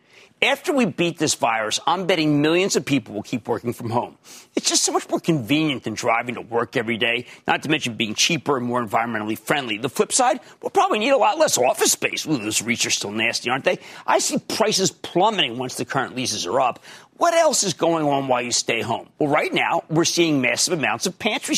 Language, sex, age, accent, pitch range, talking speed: English, male, 40-59, American, 130-195 Hz, 230 wpm